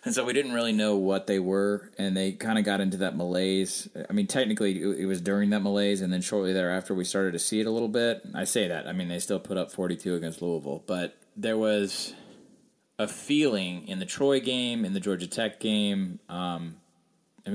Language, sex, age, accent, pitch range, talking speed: English, male, 30-49, American, 95-110 Hz, 225 wpm